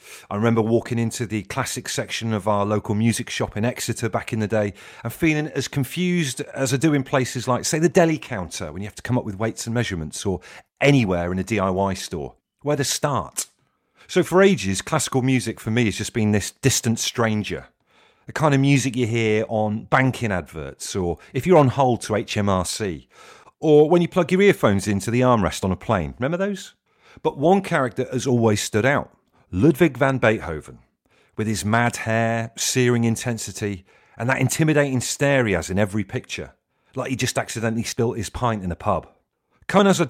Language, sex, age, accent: English, male, 40-59, British